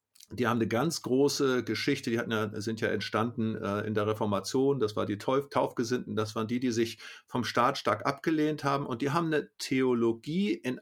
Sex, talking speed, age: male, 190 wpm, 50-69